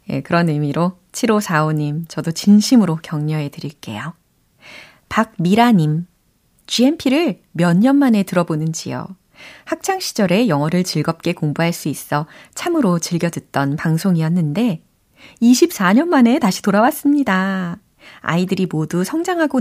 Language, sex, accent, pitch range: Korean, female, native, 160-210 Hz